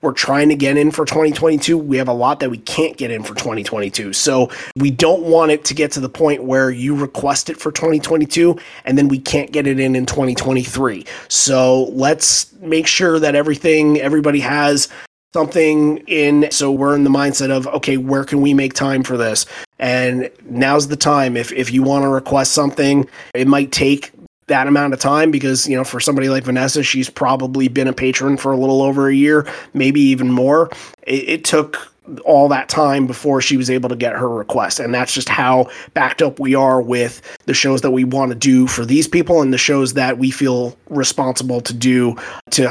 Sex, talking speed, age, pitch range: male, 210 wpm, 30-49, 130-150 Hz